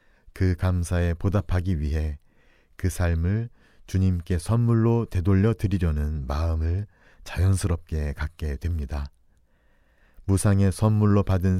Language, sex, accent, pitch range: Korean, male, native, 80-100 Hz